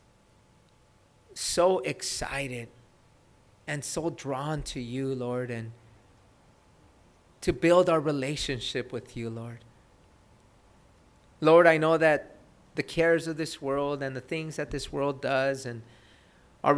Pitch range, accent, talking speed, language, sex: 115-165 Hz, American, 120 wpm, English, male